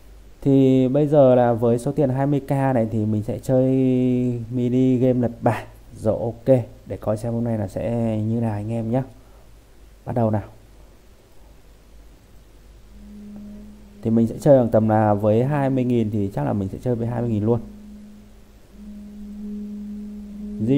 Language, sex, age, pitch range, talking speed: Vietnamese, male, 20-39, 110-135 Hz, 160 wpm